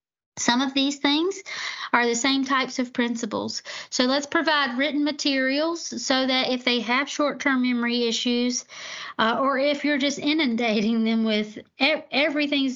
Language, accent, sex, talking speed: English, American, female, 150 wpm